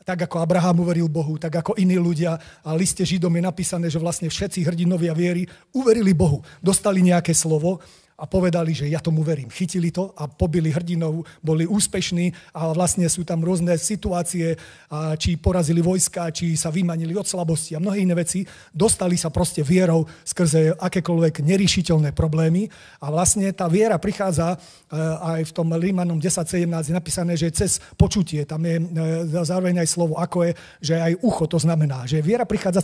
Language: Slovak